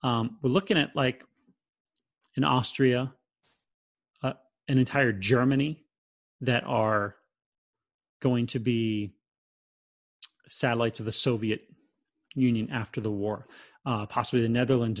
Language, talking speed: English, 110 wpm